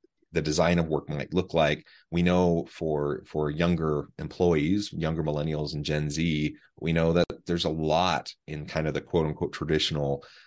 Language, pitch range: English, 75-85 Hz